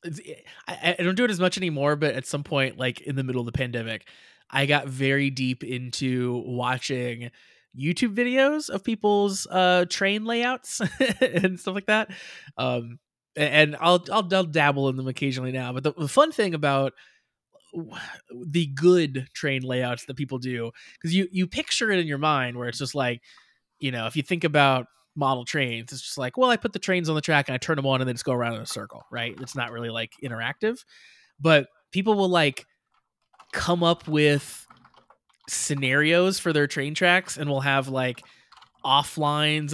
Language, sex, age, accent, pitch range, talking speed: English, male, 20-39, American, 130-175 Hz, 190 wpm